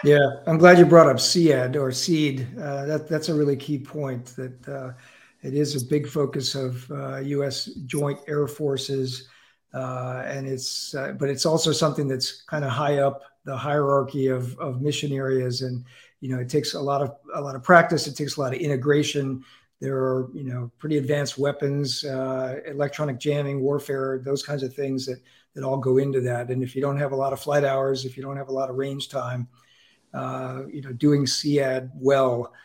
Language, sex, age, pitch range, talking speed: English, male, 50-69, 130-150 Hz, 200 wpm